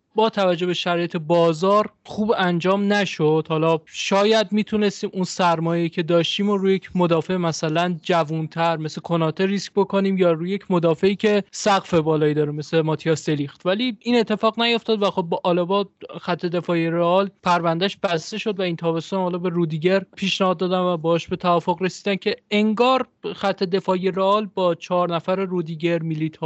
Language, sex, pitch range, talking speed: Persian, male, 170-200 Hz, 165 wpm